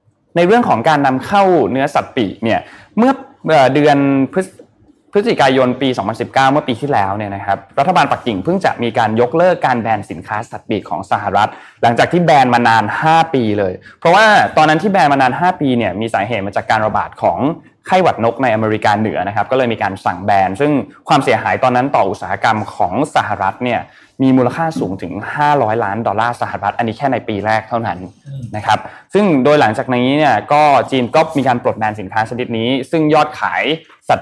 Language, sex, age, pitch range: Thai, male, 20-39, 105-135 Hz